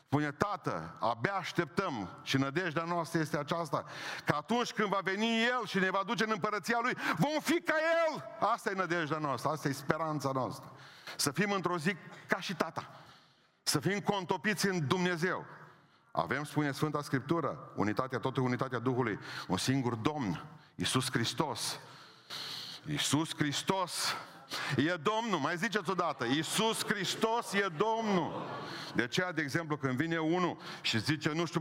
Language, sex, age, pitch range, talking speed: Romanian, male, 50-69, 150-200 Hz, 155 wpm